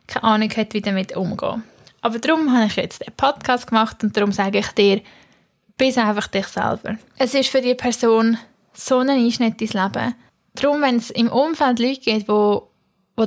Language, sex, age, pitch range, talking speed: German, female, 10-29, 210-235 Hz, 185 wpm